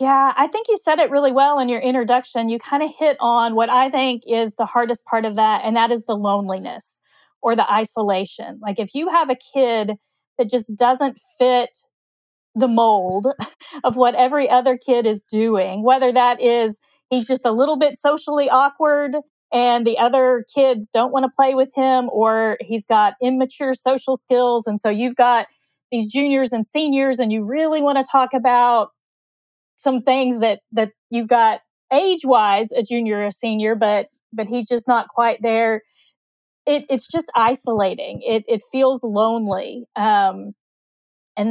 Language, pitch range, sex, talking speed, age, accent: English, 225-265 Hz, female, 180 wpm, 40-59, American